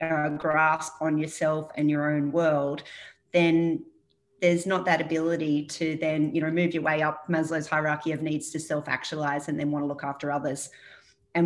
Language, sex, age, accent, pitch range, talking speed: English, female, 30-49, Australian, 150-165 Hz, 185 wpm